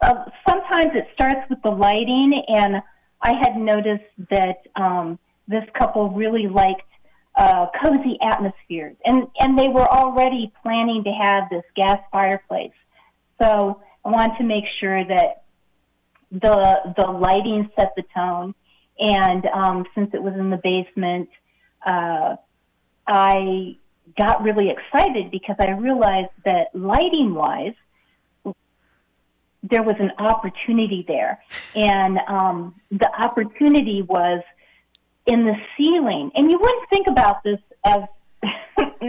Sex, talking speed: female, 125 wpm